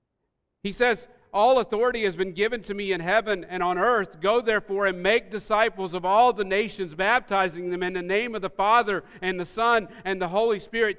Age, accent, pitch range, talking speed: 40-59, American, 160-215 Hz, 210 wpm